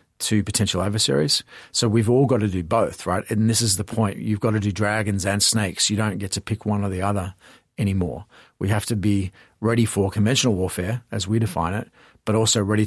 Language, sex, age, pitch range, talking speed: English, male, 40-59, 100-115 Hz, 225 wpm